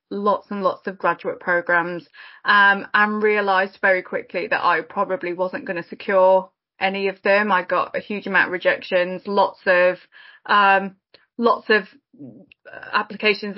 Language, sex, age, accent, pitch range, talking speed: English, female, 20-39, British, 195-230 Hz, 150 wpm